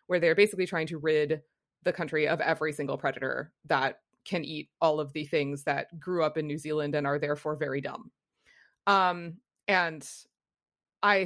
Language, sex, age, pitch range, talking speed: English, female, 20-39, 155-205 Hz, 175 wpm